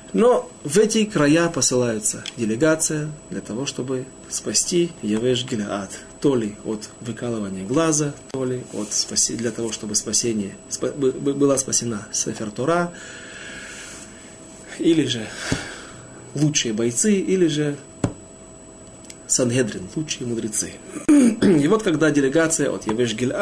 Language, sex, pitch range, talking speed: Russian, male, 120-165 Hz, 115 wpm